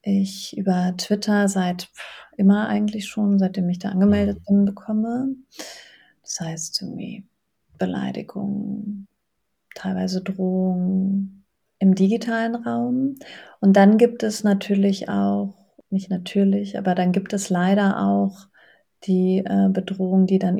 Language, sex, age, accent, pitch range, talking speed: German, female, 30-49, German, 185-215 Hz, 120 wpm